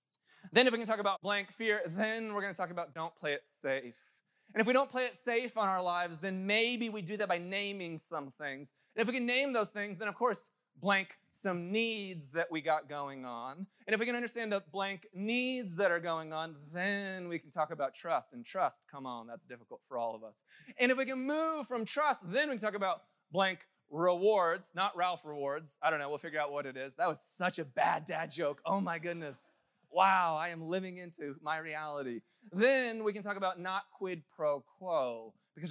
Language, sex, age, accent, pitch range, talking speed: English, male, 20-39, American, 140-195 Hz, 230 wpm